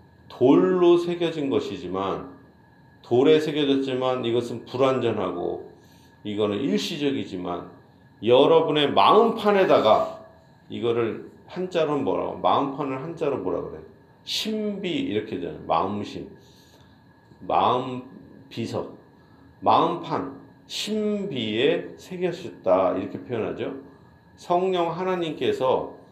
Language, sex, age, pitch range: Korean, male, 40-59, 110-180 Hz